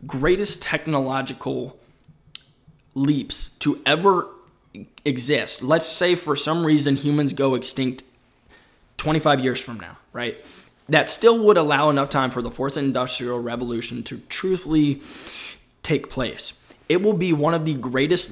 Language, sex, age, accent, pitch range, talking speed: English, male, 20-39, American, 125-155 Hz, 135 wpm